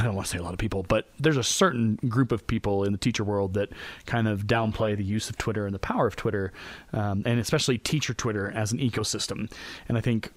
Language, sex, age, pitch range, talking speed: English, male, 30-49, 105-140 Hz, 255 wpm